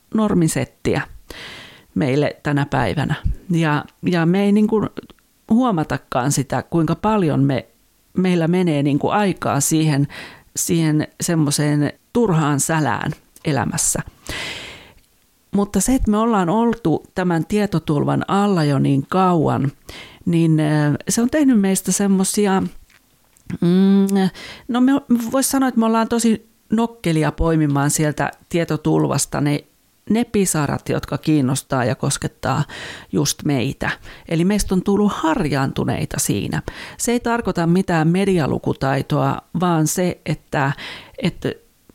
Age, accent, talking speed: 40-59, native, 115 wpm